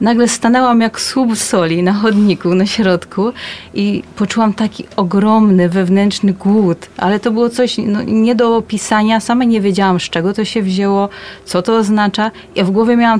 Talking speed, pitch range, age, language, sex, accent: 175 wpm, 185-225 Hz, 30-49, Polish, female, native